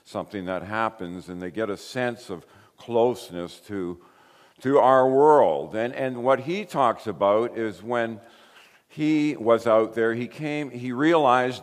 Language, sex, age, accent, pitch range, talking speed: English, male, 50-69, American, 95-130 Hz, 155 wpm